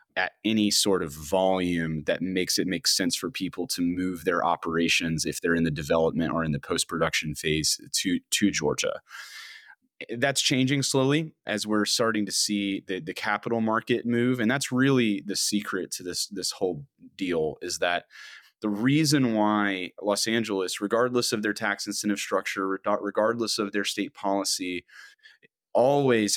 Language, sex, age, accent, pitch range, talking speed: English, male, 30-49, American, 95-120 Hz, 165 wpm